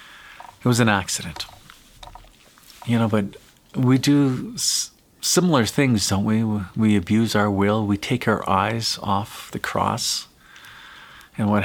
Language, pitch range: English, 100-120 Hz